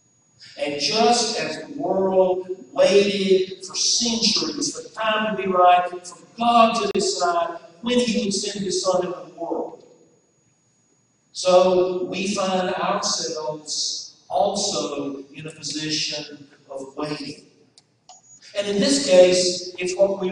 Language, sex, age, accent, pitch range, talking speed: English, male, 50-69, American, 160-225 Hz, 125 wpm